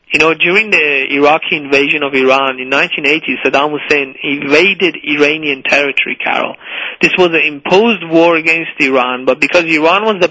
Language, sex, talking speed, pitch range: English, male, 165 wpm, 145-175 Hz